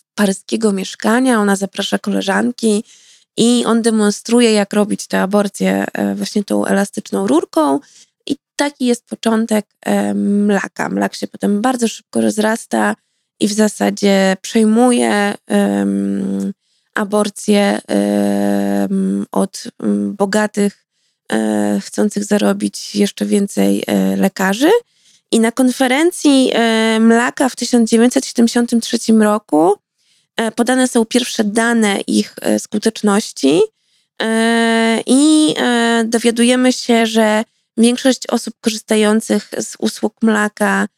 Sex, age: female, 20-39